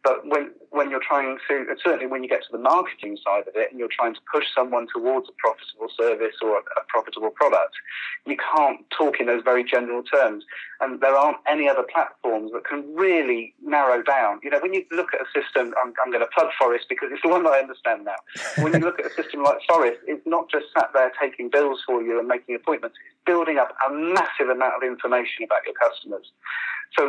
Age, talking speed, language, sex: 40-59, 235 wpm, English, male